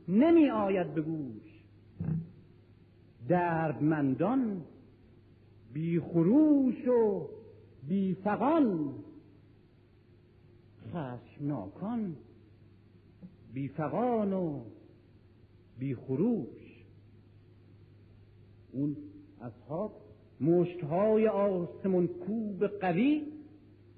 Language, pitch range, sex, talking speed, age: Persian, 105-175 Hz, male, 45 wpm, 50-69